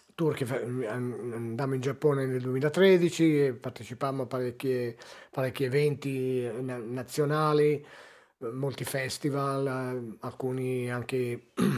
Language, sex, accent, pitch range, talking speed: Italian, male, native, 125-145 Hz, 75 wpm